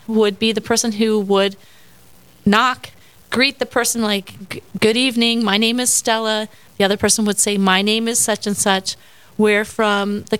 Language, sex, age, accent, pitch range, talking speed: English, female, 30-49, American, 205-245 Hz, 180 wpm